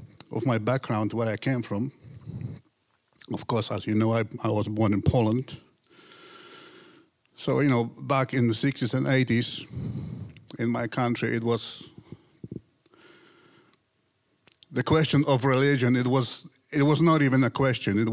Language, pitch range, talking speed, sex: English, 110-140 Hz, 150 wpm, male